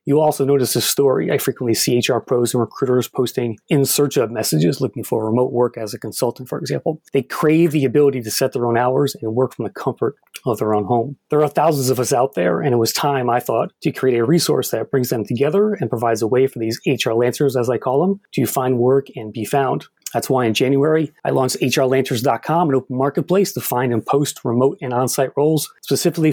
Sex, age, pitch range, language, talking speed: male, 30-49, 120-150 Hz, English, 230 wpm